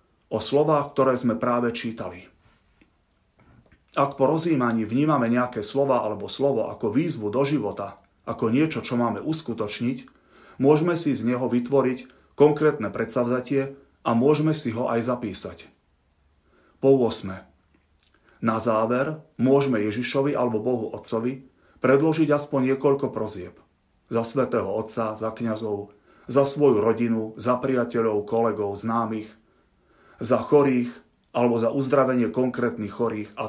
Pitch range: 110-135 Hz